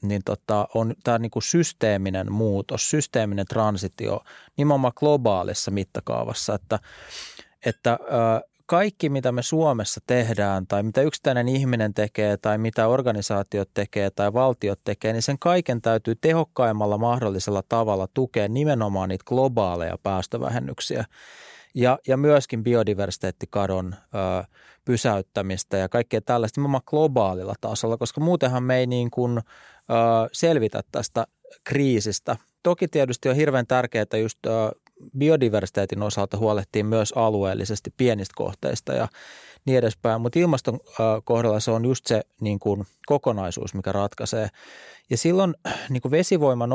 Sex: male